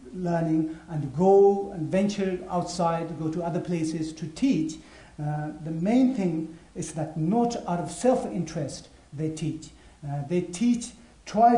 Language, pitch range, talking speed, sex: English, 155-180 Hz, 150 wpm, male